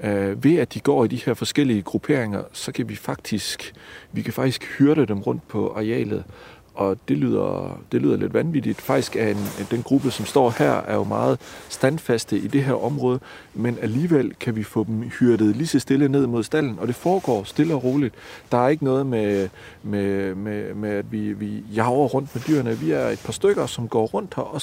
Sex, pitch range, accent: male, 110-145 Hz, native